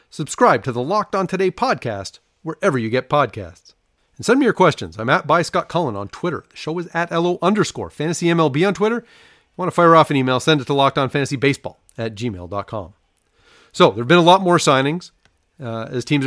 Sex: male